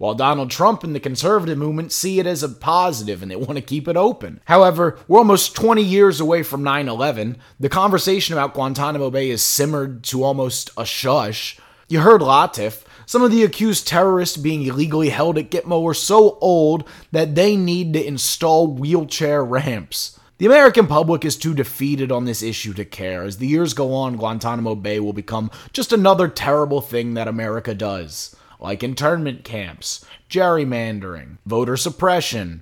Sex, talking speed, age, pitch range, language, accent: male, 170 wpm, 20-39, 110-165 Hz, English, American